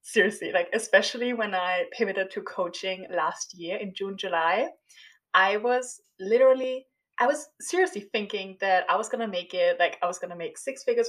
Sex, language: female, English